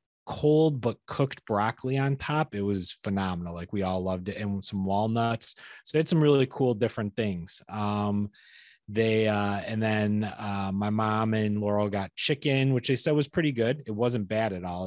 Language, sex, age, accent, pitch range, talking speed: English, male, 30-49, American, 100-110 Hz, 195 wpm